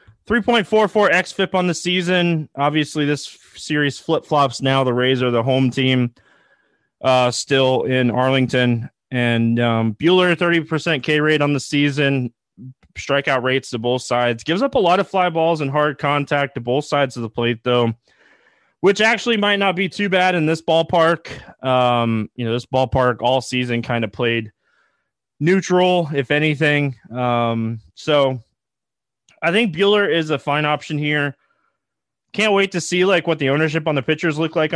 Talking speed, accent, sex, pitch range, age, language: 165 wpm, American, male, 120-160 Hz, 20-39, English